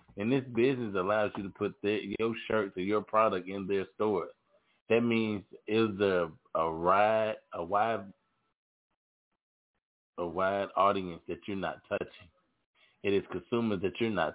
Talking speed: 155 wpm